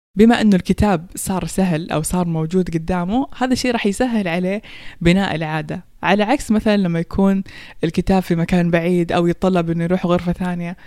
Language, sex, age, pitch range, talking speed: Persian, female, 20-39, 170-215 Hz, 170 wpm